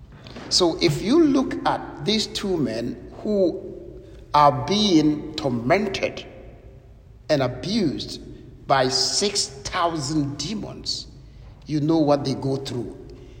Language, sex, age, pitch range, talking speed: English, male, 60-79, 145-215 Hz, 105 wpm